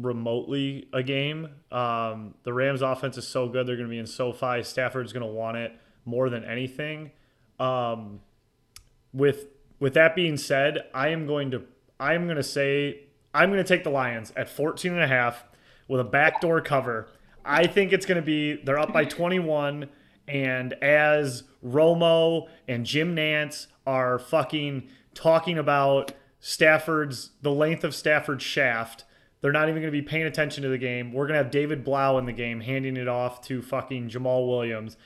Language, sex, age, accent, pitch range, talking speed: English, male, 30-49, American, 125-150 Hz, 175 wpm